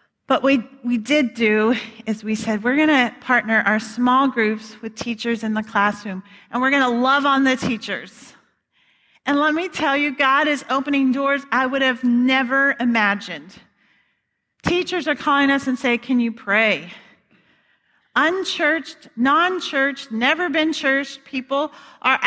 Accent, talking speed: American, 155 wpm